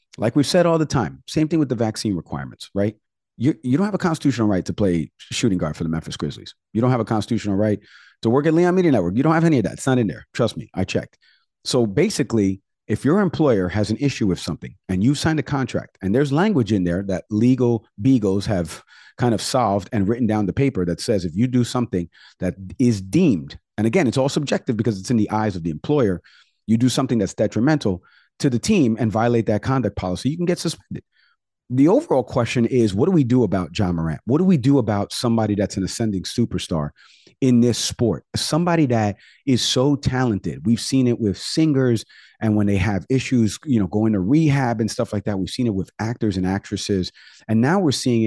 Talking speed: 230 wpm